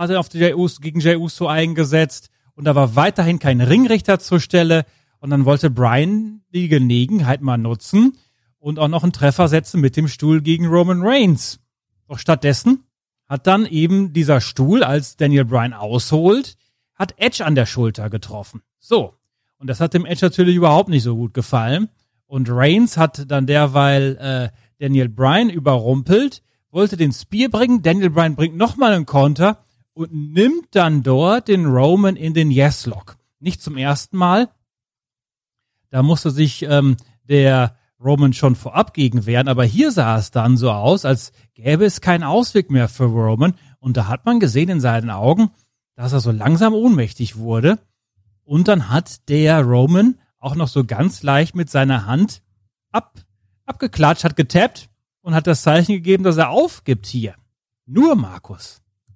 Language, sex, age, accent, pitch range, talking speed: German, male, 40-59, German, 125-175 Hz, 165 wpm